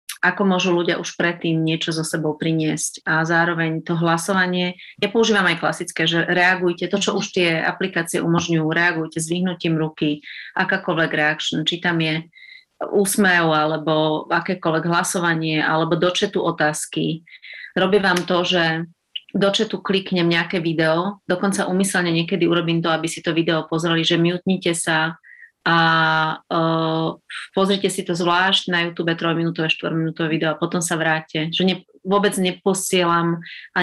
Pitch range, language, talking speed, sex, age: 160-185 Hz, Slovak, 145 wpm, female, 30-49